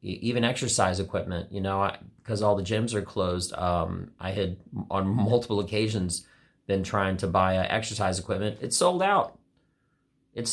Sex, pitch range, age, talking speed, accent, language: male, 90-110 Hz, 30-49, 160 wpm, American, English